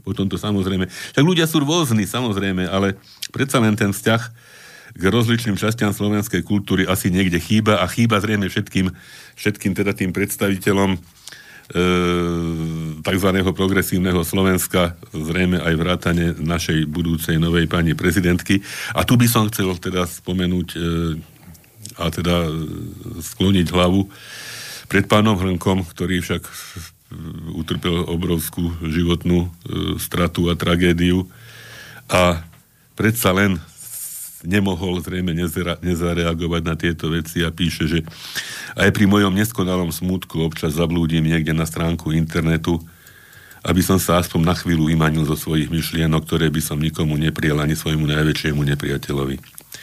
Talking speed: 130 wpm